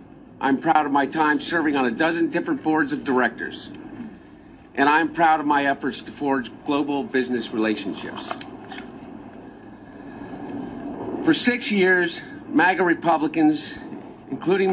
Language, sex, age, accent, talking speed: English, male, 50-69, American, 120 wpm